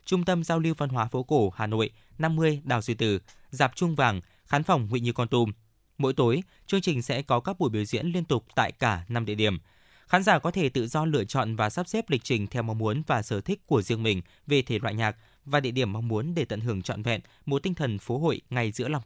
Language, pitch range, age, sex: Vietnamese, 110-150 Hz, 20-39, male